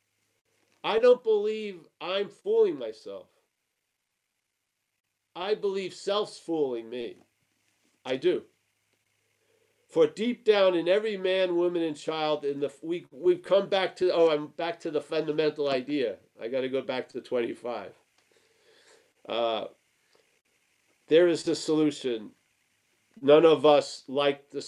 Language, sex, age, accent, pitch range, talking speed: English, male, 50-69, American, 145-200 Hz, 130 wpm